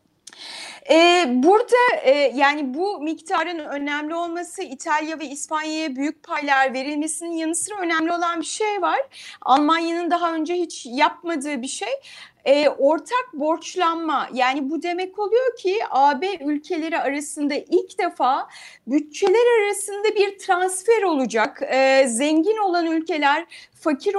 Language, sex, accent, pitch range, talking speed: Turkish, female, native, 300-395 Hz, 120 wpm